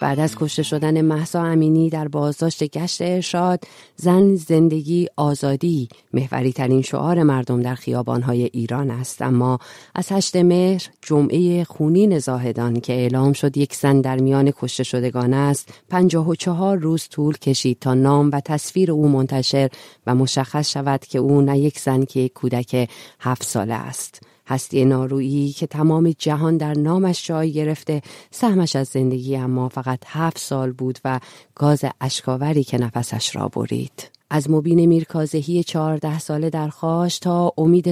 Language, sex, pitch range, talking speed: Persian, female, 130-160 Hz, 150 wpm